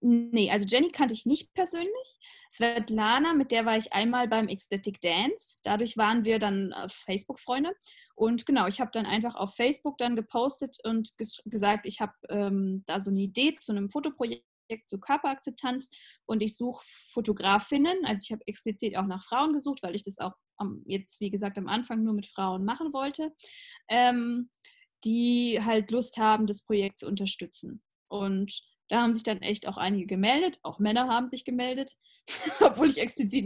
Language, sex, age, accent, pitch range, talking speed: German, female, 10-29, German, 210-265 Hz, 175 wpm